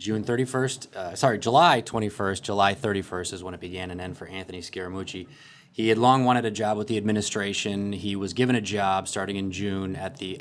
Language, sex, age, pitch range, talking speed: English, male, 20-39, 95-115 Hz, 210 wpm